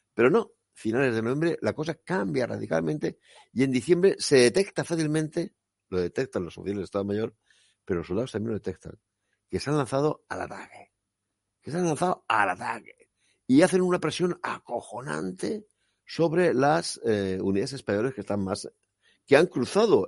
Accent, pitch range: Spanish, 95-135 Hz